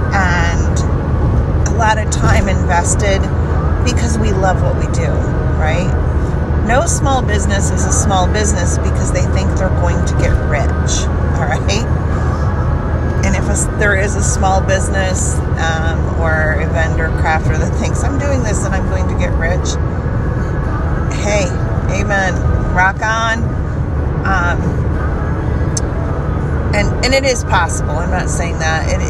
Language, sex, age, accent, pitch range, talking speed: English, female, 40-59, American, 75-90 Hz, 140 wpm